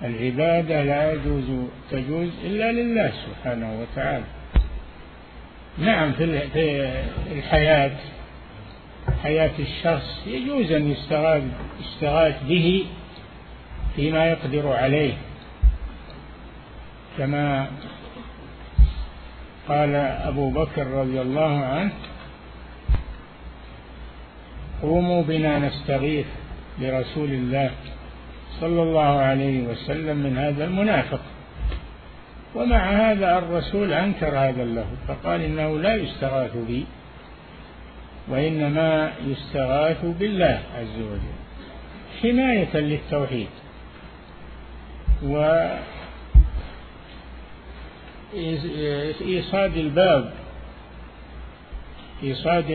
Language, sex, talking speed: Arabic, male, 70 wpm